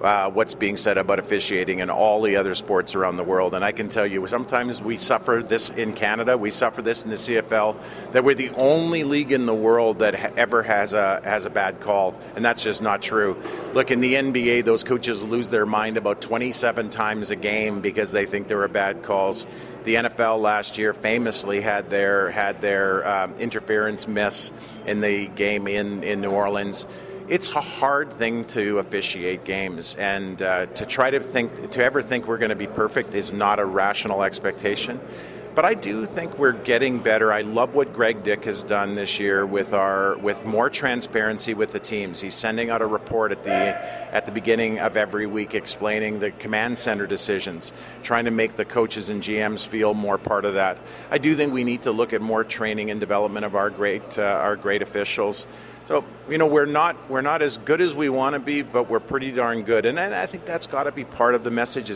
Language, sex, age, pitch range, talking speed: English, male, 50-69, 105-120 Hz, 215 wpm